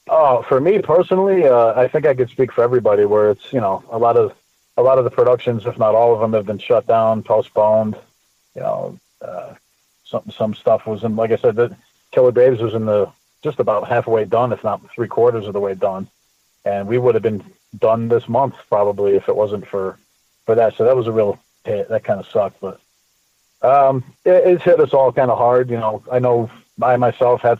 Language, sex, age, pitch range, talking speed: English, male, 40-59, 110-140 Hz, 230 wpm